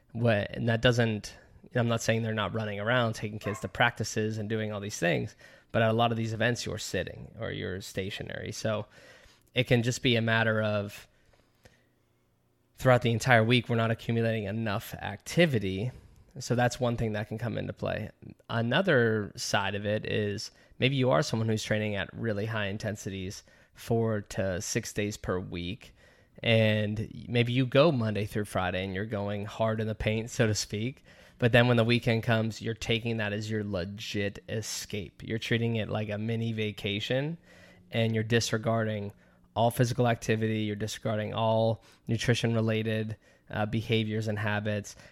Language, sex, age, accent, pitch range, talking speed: English, male, 20-39, American, 105-115 Hz, 175 wpm